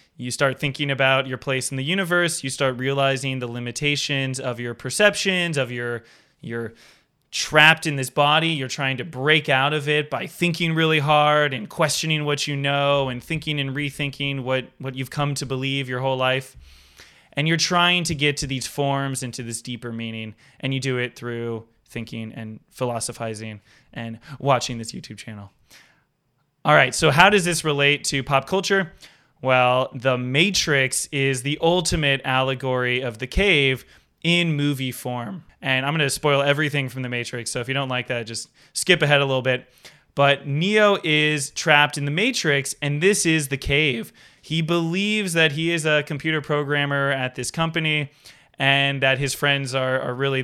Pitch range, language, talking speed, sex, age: 130-150 Hz, English, 180 wpm, male, 20-39